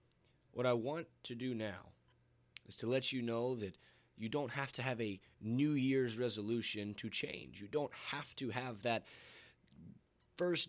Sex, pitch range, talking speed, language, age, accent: male, 110-140 Hz, 170 wpm, English, 20-39, American